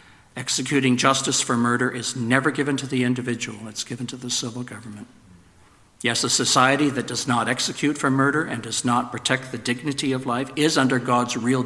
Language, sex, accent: English, male, American